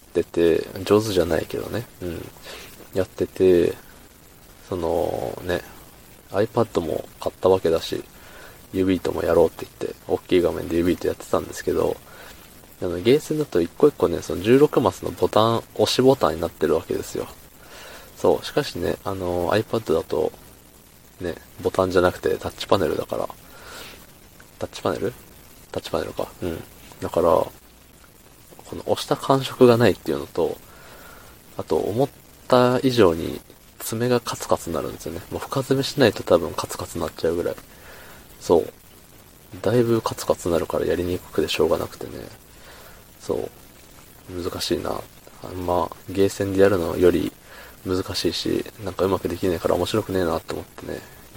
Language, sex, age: Japanese, male, 20-39